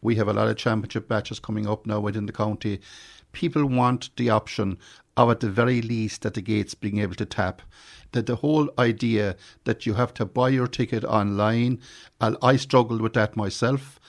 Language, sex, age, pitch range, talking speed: English, male, 50-69, 110-125 Hz, 195 wpm